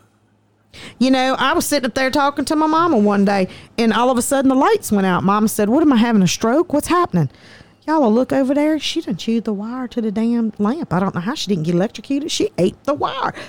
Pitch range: 180-245 Hz